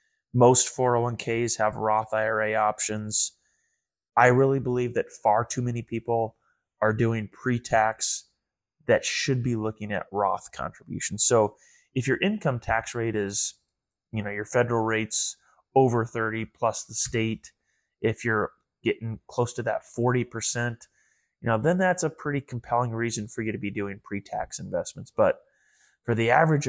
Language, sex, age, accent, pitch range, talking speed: English, male, 20-39, American, 105-120 Hz, 155 wpm